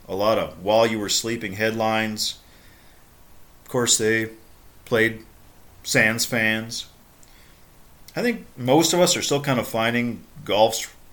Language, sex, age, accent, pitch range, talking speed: English, male, 40-59, American, 105-145 Hz, 120 wpm